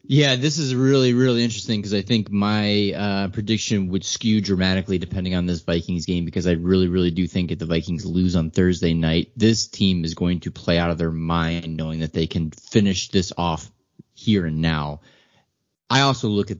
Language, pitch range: English, 90-110 Hz